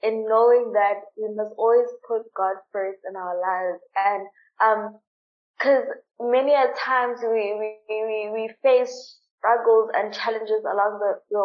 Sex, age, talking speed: female, 20-39, 150 wpm